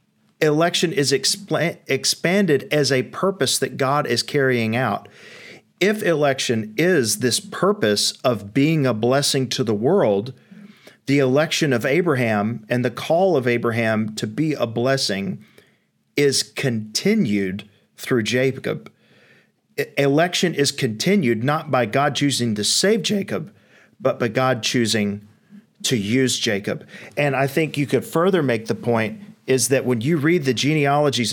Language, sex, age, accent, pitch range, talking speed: English, male, 40-59, American, 120-160 Hz, 140 wpm